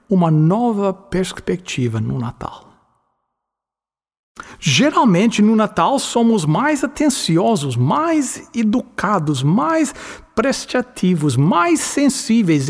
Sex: male